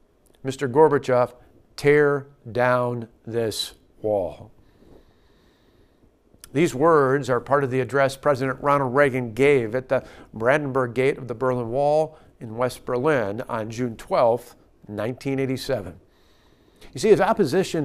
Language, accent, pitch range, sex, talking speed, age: English, American, 125-155 Hz, male, 120 wpm, 50-69